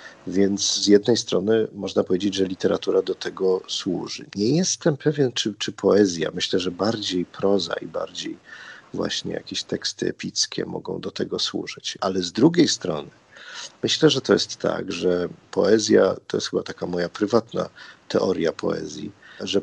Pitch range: 95-125 Hz